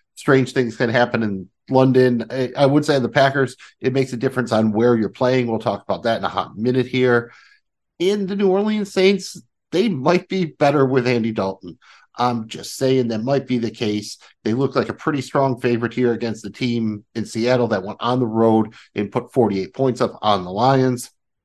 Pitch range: 105-130 Hz